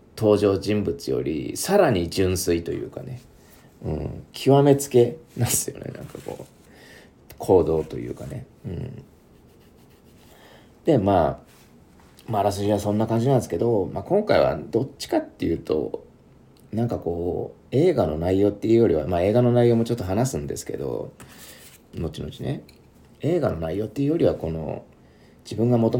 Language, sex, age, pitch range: Japanese, male, 40-59, 100-135 Hz